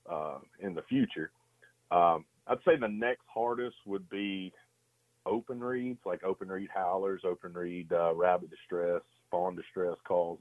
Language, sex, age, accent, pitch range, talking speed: English, male, 40-59, American, 90-110 Hz, 150 wpm